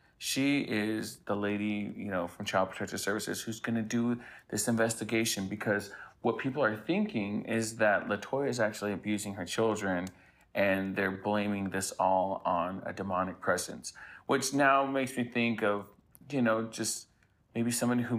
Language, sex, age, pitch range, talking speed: English, male, 30-49, 95-115 Hz, 160 wpm